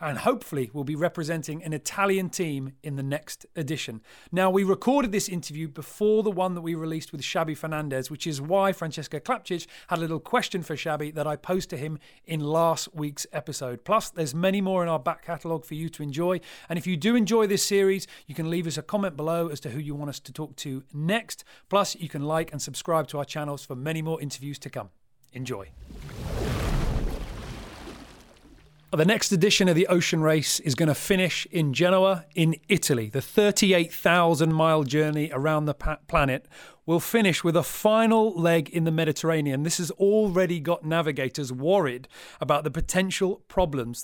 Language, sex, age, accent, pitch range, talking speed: English, male, 30-49, British, 150-190 Hz, 190 wpm